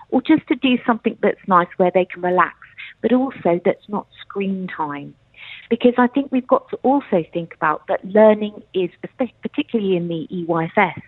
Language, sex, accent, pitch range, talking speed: English, female, British, 170-215 Hz, 180 wpm